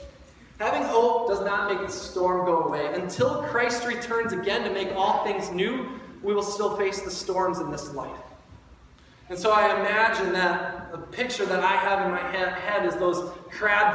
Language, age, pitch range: English, 20-39, 170-230 Hz